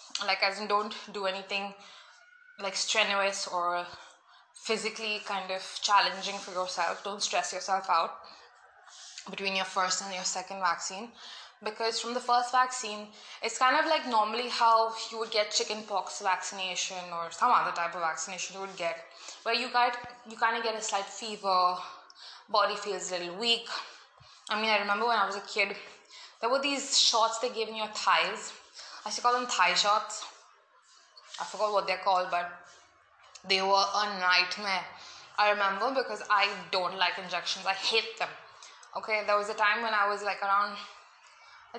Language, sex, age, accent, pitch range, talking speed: English, female, 20-39, Indian, 190-225 Hz, 175 wpm